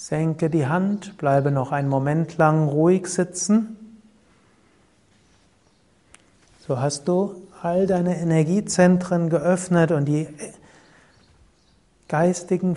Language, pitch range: German, 140-180 Hz